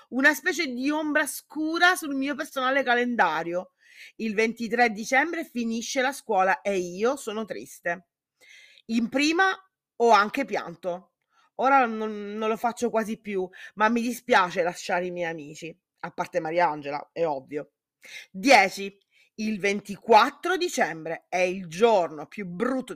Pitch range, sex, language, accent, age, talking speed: 185-260 Hz, female, Italian, native, 30-49, 135 wpm